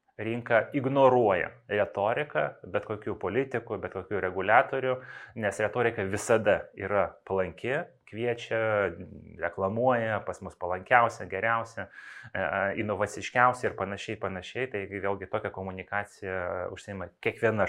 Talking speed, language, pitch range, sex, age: 100 wpm, English, 95-115 Hz, male, 20-39